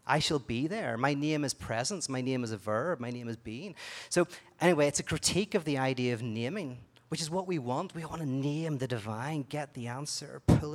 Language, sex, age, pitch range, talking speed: English, male, 30-49, 130-190 Hz, 235 wpm